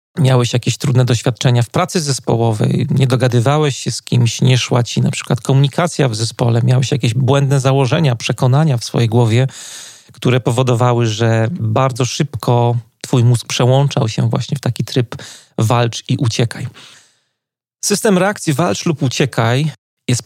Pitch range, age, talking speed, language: 120-140 Hz, 40-59, 150 wpm, Polish